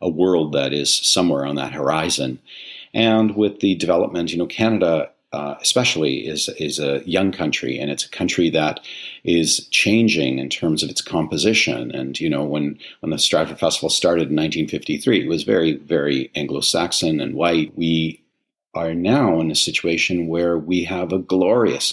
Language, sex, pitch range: English, male, 75-100 Hz